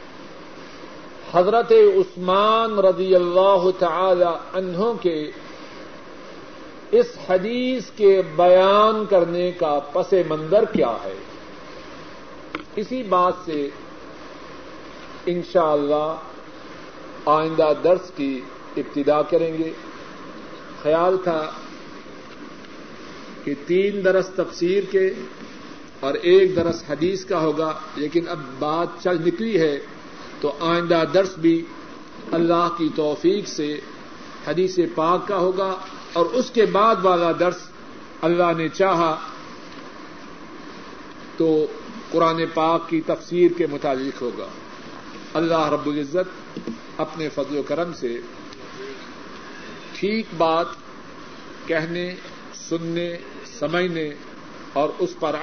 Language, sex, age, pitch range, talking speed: Urdu, male, 50-69, 160-195 Hz, 100 wpm